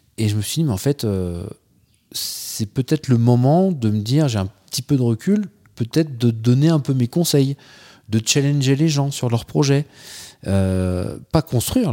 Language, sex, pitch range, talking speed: French, male, 100-140 Hz, 195 wpm